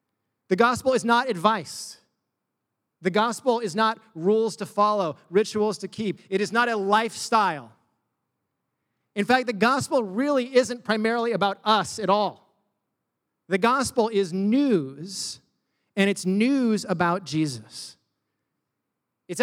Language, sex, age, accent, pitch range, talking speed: English, male, 30-49, American, 155-220 Hz, 125 wpm